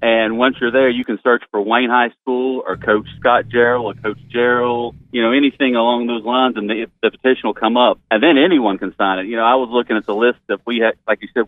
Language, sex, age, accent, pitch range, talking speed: English, male, 40-59, American, 105-125 Hz, 265 wpm